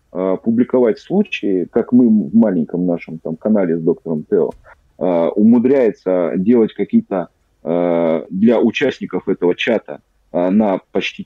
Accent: native